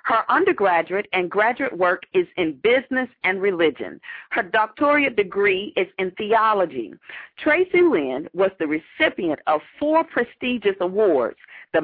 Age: 40-59